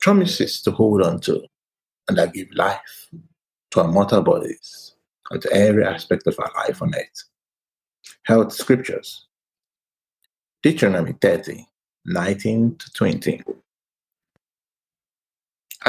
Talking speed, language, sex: 100 wpm, English, male